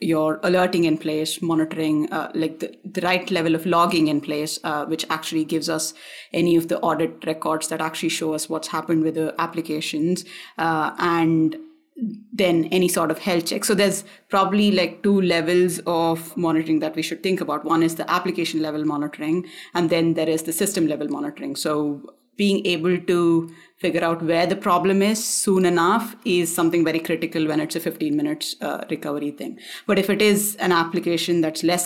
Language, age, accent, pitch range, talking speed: English, 30-49, Indian, 160-185 Hz, 185 wpm